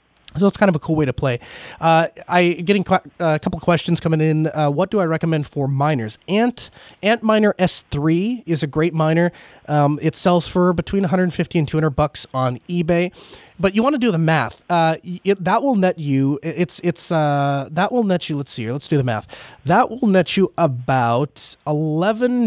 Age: 30-49